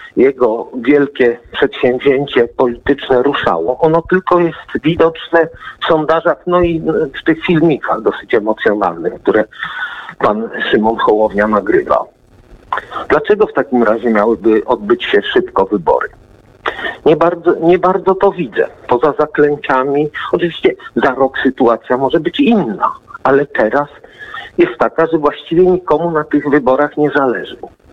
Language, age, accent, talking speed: Polish, 50-69, native, 125 wpm